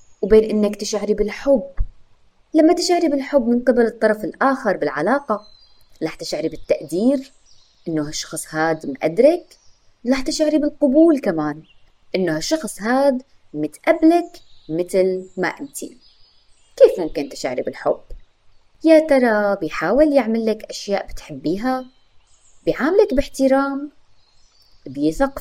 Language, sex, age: Arabic, female, 20-39